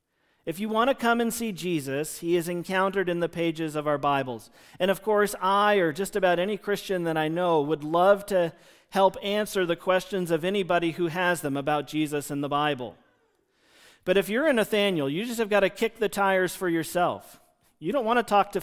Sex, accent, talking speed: male, American, 215 wpm